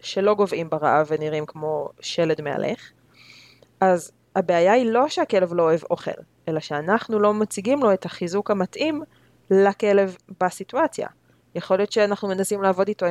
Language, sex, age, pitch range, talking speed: Hebrew, female, 20-39, 165-215 Hz, 140 wpm